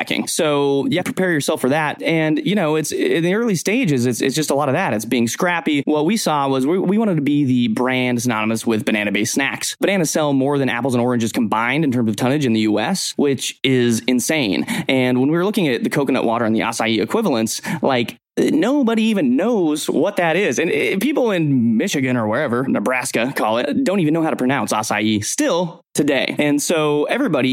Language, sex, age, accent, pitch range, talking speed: English, male, 20-39, American, 120-160 Hz, 220 wpm